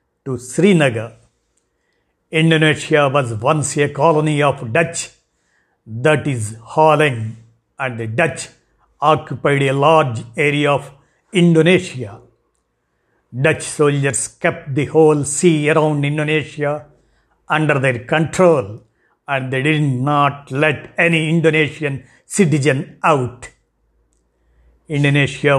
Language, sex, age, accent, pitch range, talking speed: Telugu, male, 50-69, native, 130-160 Hz, 100 wpm